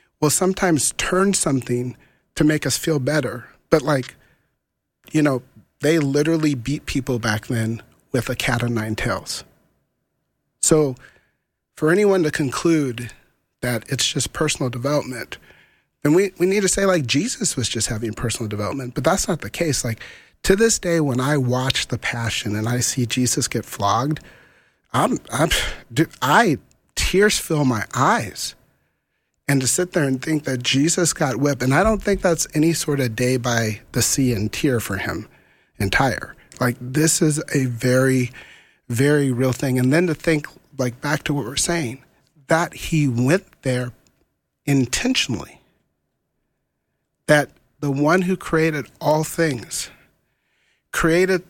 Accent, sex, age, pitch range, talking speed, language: American, male, 40-59, 125-160 Hz, 155 wpm, English